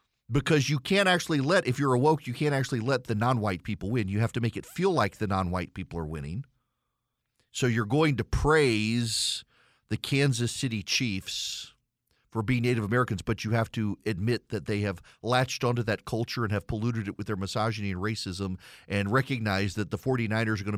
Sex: male